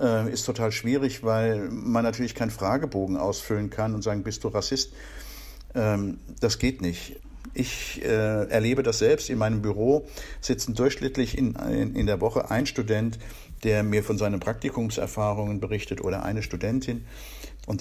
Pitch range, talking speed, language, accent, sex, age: 105-130 Hz, 140 wpm, German, German, male, 60-79